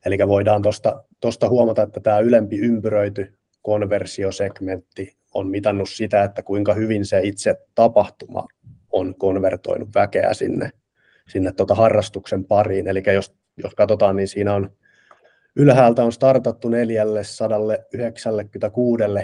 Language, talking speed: Finnish, 115 wpm